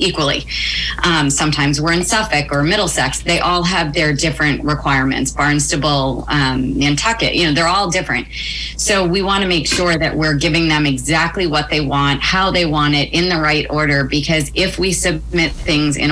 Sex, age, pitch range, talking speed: female, 30-49, 145-170 Hz, 180 wpm